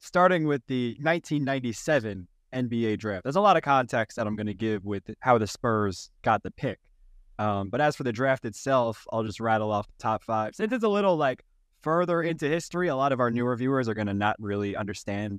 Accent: American